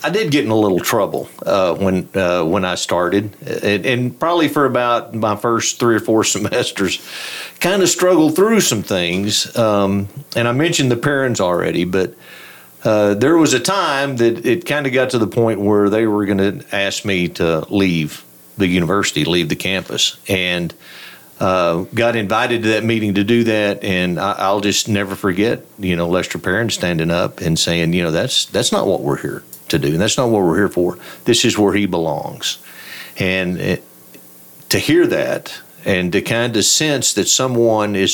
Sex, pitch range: male, 95-120 Hz